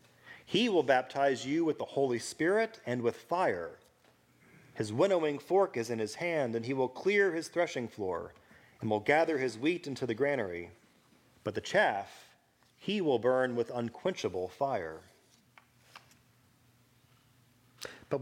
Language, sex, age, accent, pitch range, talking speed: English, male, 30-49, American, 120-145 Hz, 140 wpm